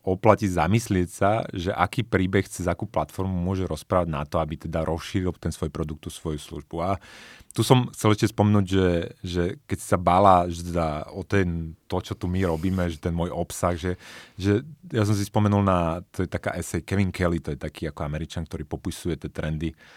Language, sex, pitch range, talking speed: Slovak, male, 85-105 Hz, 200 wpm